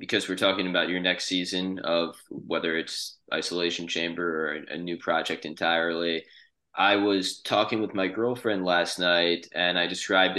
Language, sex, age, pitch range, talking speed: English, male, 20-39, 90-100 Hz, 160 wpm